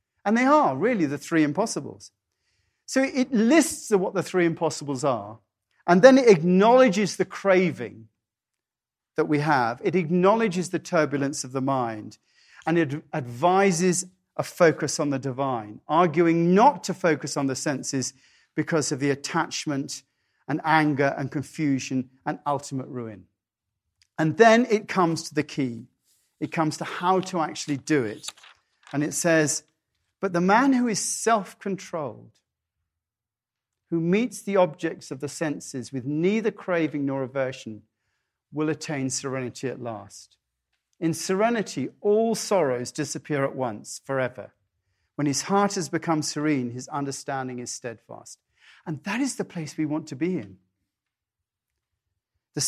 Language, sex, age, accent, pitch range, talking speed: English, male, 40-59, British, 125-180 Hz, 145 wpm